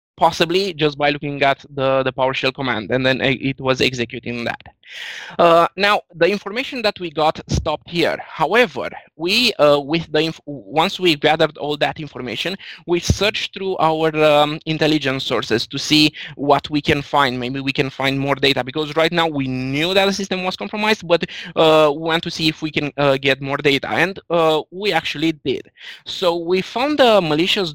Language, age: English, 20-39